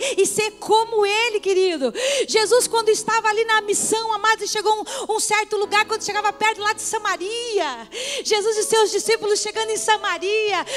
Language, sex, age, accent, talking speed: Portuguese, female, 40-59, Brazilian, 175 wpm